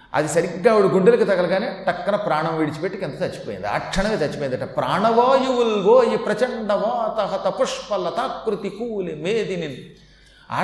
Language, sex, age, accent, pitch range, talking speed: Telugu, male, 40-59, native, 160-220 Hz, 120 wpm